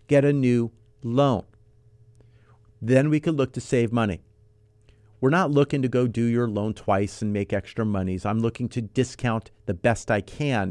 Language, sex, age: English, male, 40-59